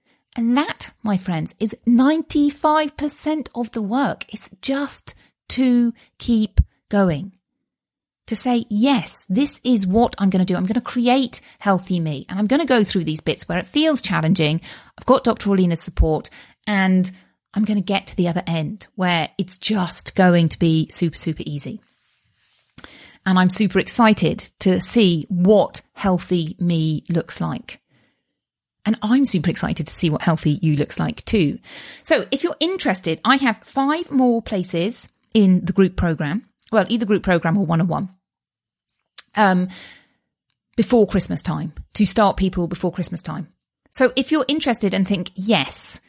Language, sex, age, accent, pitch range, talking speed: English, female, 40-59, British, 180-235 Hz, 160 wpm